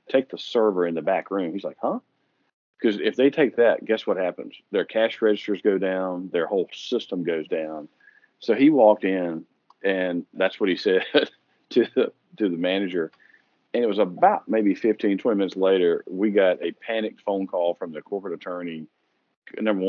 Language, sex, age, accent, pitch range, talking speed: English, male, 40-59, American, 85-110 Hz, 185 wpm